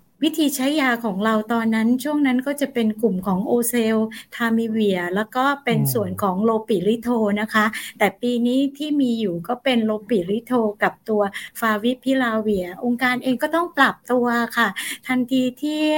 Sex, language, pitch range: female, Thai, 215-255 Hz